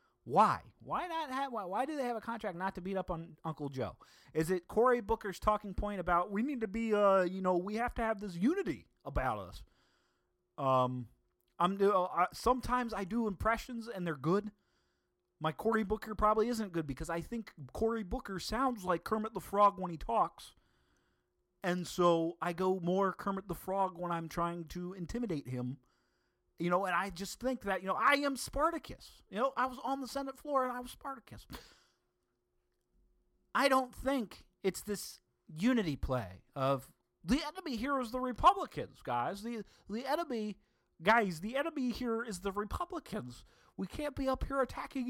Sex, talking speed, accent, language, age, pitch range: male, 185 wpm, American, English, 30-49, 175-245 Hz